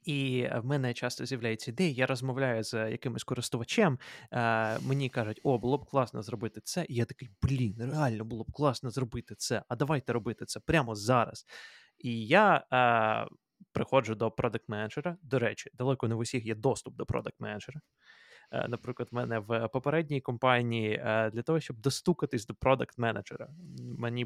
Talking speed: 165 wpm